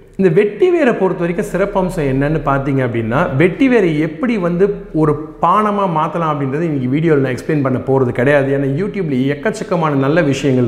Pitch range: 140-190 Hz